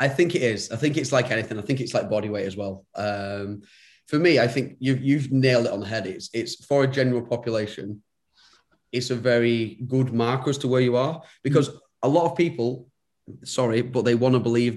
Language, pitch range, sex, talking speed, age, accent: English, 110-130 Hz, male, 230 wpm, 20-39, British